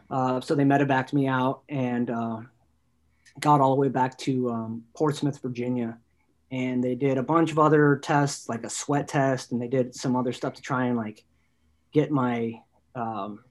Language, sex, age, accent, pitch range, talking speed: English, male, 30-49, American, 120-145 Hz, 185 wpm